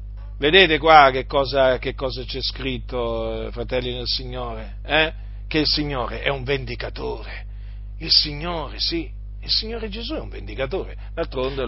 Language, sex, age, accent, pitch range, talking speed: Italian, male, 40-59, native, 110-170 Hz, 145 wpm